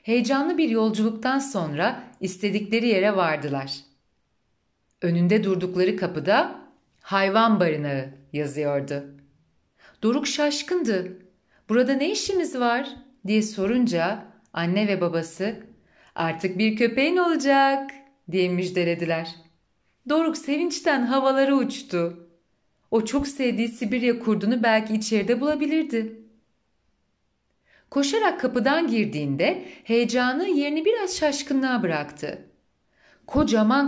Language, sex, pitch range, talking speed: Turkish, female, 165-255 Hz, 90 wpm